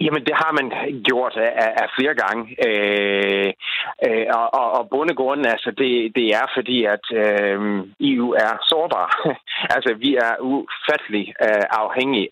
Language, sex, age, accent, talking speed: Danish, male, 30-49, native, 140 wpm